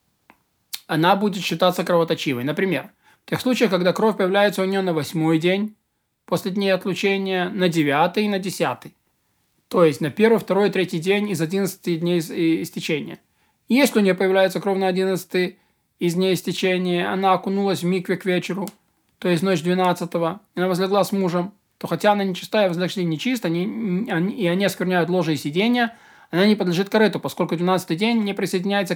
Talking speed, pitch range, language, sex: 175 wpm, 165-195 Hz, Russian, male